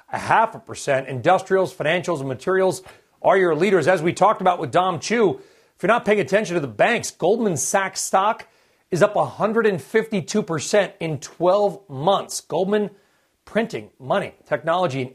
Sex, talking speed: male, 160 wpm